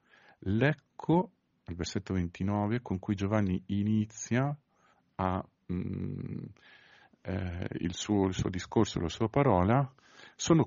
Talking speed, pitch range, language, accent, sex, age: 110 wpm, 90-110 Hz, Italian, native, male, 50-69